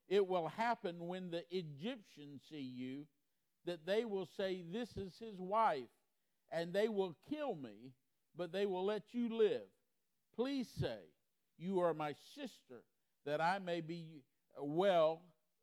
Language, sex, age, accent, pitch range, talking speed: English, male, 50-69, American, 150-195 Hz, 145 wpm